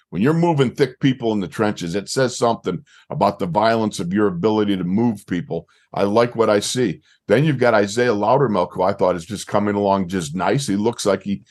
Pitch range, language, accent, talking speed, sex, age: 105-130 Hz, English, American, 225 wpm, male, 50-69